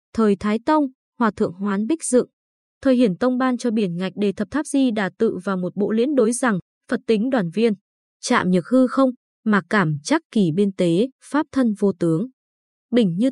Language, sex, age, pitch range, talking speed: Vietnamese, female, 20-39, 195-255 Hz, 210 wpm